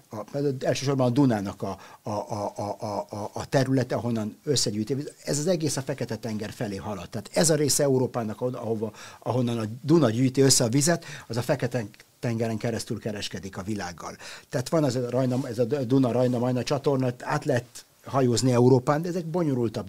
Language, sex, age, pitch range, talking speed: Hungarian, male, 60-79, 110-135 Hz, 165 wpm